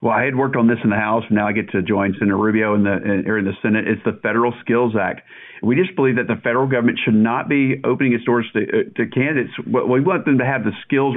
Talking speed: 280 wpm